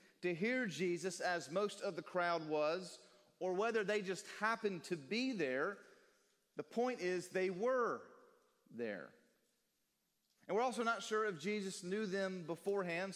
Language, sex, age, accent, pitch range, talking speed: English, male, 40-59, American, 155-200 Hz, 150 wpm